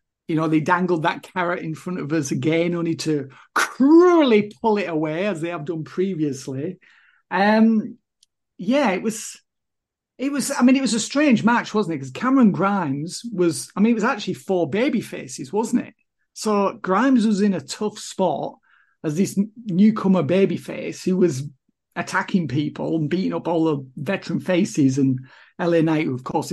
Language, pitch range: English, 160-215 Hz